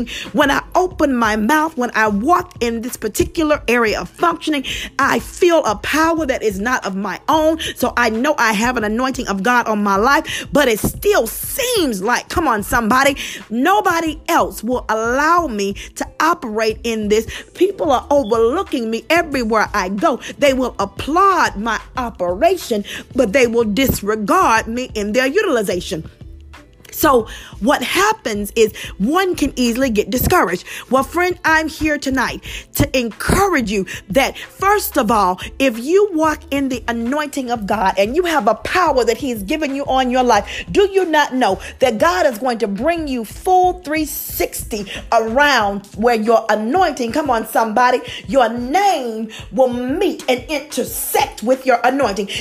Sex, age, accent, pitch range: female, 40-59, American, 225-315 Hz